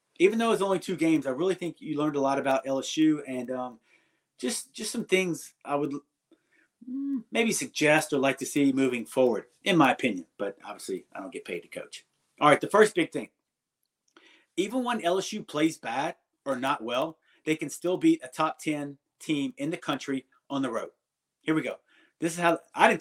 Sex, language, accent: male, English, American